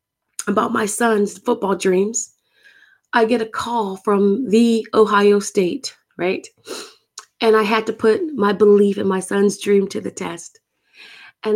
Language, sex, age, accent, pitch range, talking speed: English, female, 30-49, American, 195-240 Hz, 150 wpm